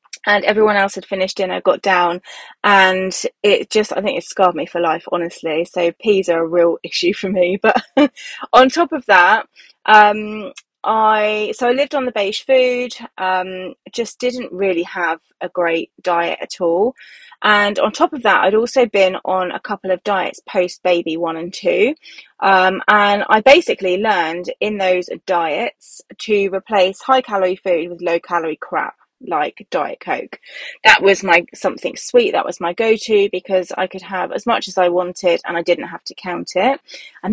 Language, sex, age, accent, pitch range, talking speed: English, female, 20-39, British, 180-215 Hz, 180 wpm